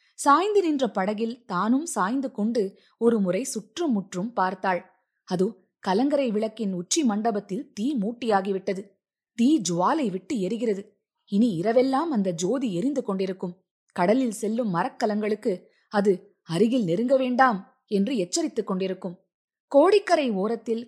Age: 20-39